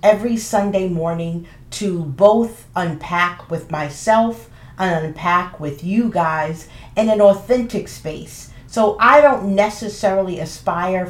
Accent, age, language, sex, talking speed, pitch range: American, 40-59, English, female, 120 wpm, 180-260 Hz